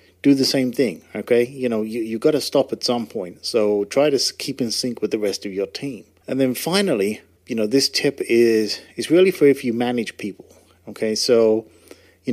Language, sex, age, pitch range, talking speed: English, male, 40-59, 110-130 Hz, 220 wpm